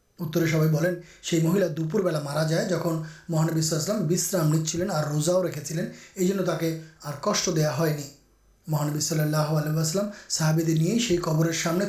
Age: 30-49